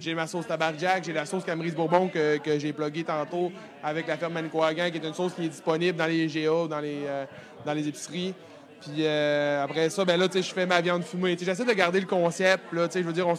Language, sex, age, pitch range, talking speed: French, male, 20-39, 160-190 Hz, 240 wpm